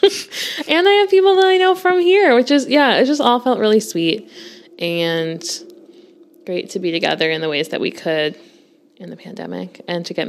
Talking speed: 205 wpm